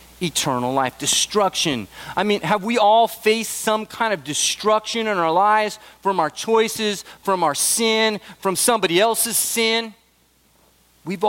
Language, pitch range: English, 130-205 Hz